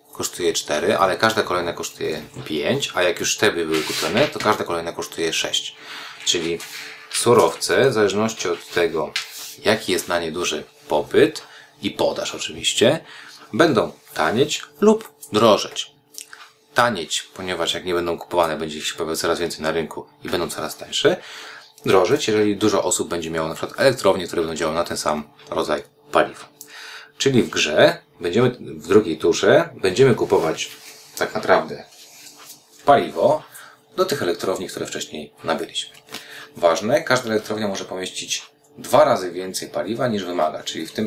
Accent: native